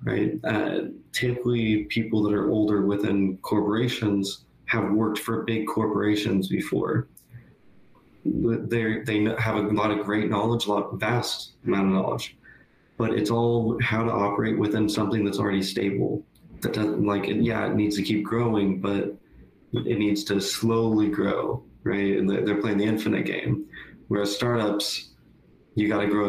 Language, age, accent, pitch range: English, 20-39, American, 100-110 Hz